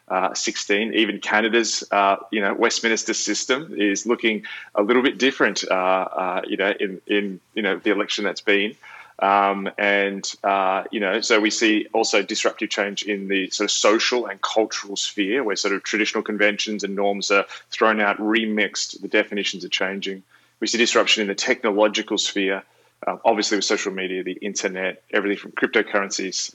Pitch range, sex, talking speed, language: 100-110 Hz, male, 175 wpm, English